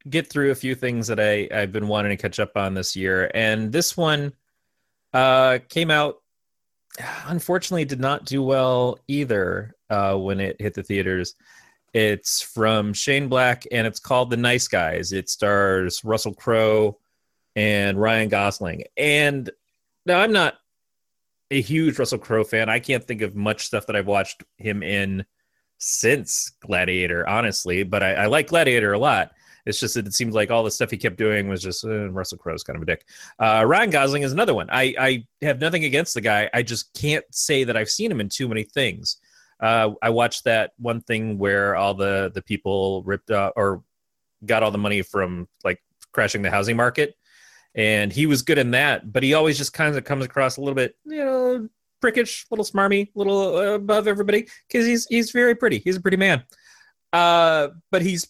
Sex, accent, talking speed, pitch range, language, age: male, American, 195 wpm, 105-150 Hz, English, 30-49